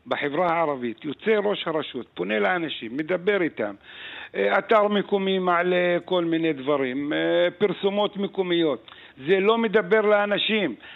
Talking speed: 115 wpm